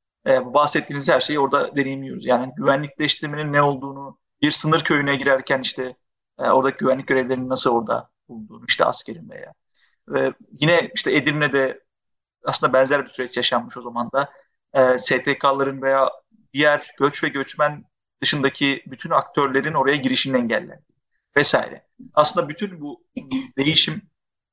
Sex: male